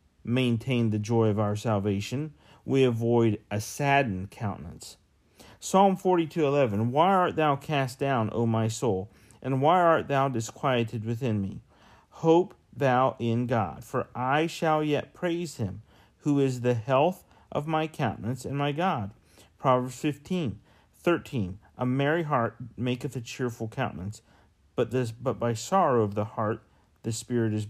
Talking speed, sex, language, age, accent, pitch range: 155 wpm, male, English, 40-59, American, 110-145 Hz